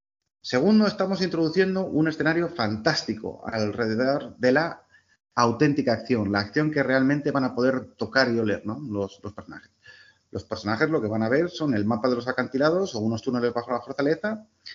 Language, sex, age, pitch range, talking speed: Spanish, male, 30-49, 115-160 Hz, 175 wpm